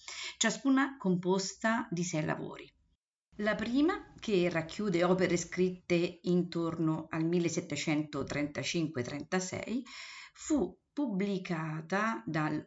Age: 50-69